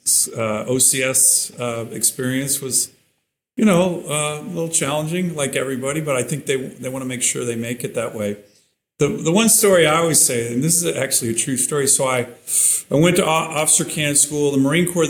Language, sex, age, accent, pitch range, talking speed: English, male, 40-59, American, 120-145 Hz, 210 wpm